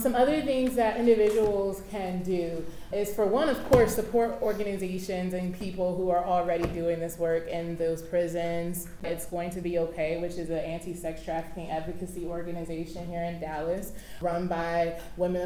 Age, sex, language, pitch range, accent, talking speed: 20-39, female, English, 170-185 Hz, American, 165 wpm